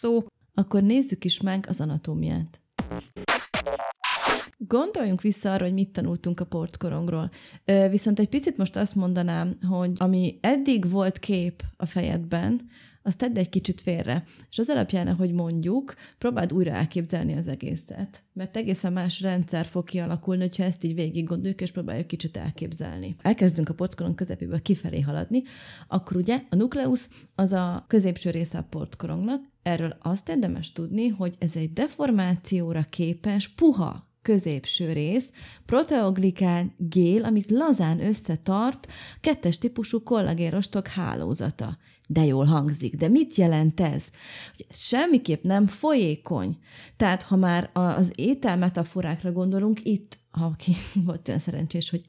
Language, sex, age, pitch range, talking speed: Hungarian, female, 30-49, 170-210 Hz, 135 wpm